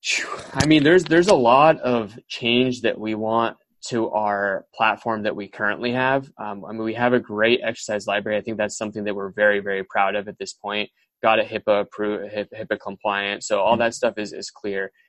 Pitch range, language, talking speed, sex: 100-115 Hz, English, 205 wpm, male